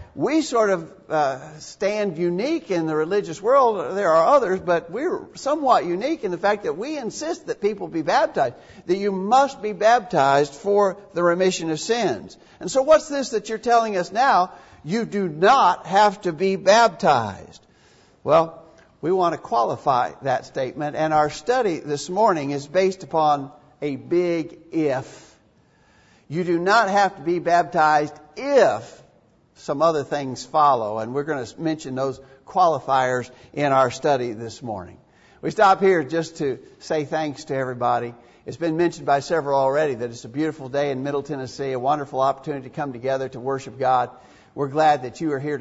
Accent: American